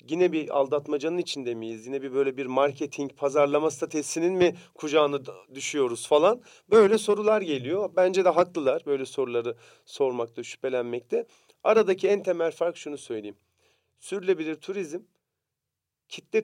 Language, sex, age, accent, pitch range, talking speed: Turkish, male, 40-59, native, 140-210 Hz, 130 wpm